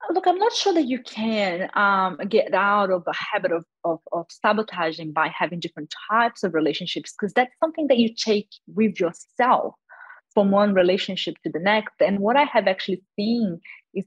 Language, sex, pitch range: English, female, 175-230 Hz